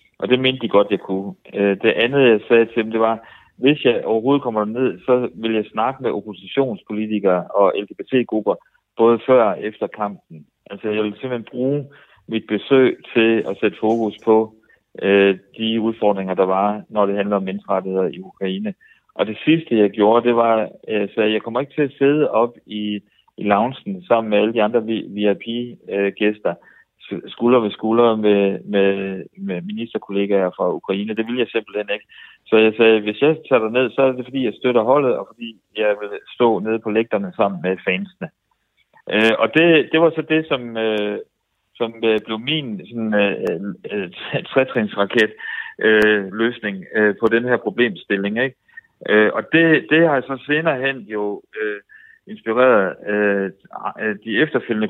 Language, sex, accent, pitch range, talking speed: Danish, male, native, 105-130 Hz, 175 wpm